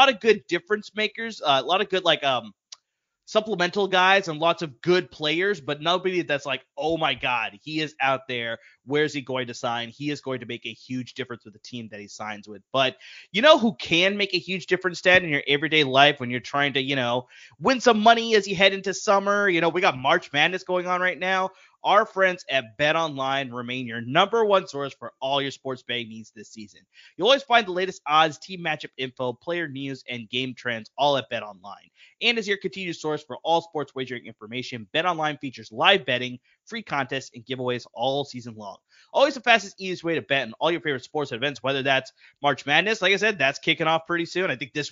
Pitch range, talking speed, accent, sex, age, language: 130-185 Hz, 235 wpm, American, male, 30-49, English